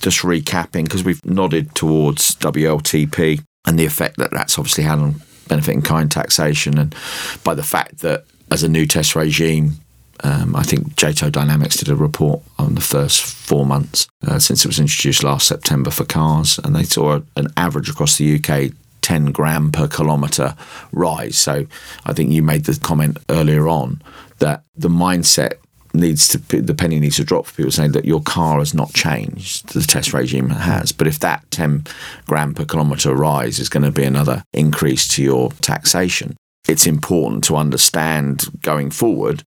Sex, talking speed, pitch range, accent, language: male, 180 wpm, 75-80 Hz, British, English